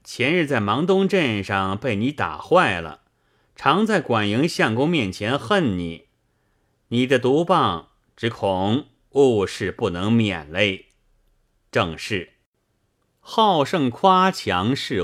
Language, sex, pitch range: Chinese, male, 100-155 Hz